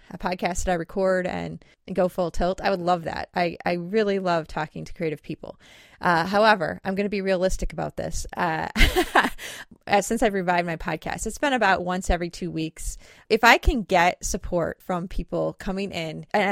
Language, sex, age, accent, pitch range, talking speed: English, female, 30-49, American, 175-200 Hz, 195 wpm